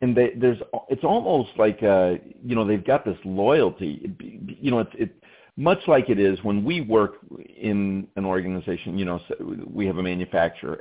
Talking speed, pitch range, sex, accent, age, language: 165 wpm, 90-110 Hz, male, American, 50-69, English